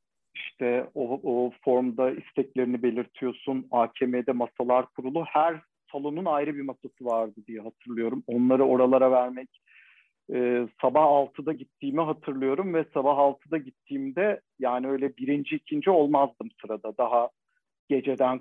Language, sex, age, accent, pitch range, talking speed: Turkish, male, 50-69, native, 115-150 Hz, 120 wpm